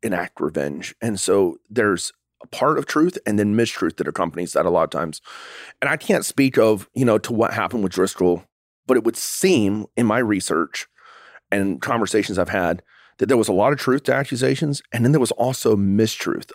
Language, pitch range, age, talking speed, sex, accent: English, 95-120 Hz, 30-49, 205 wpm, male, American